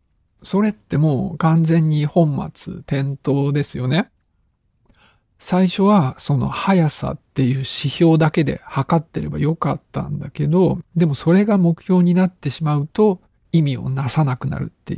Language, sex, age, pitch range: Japanese, male, 50-69, 135-175 Hz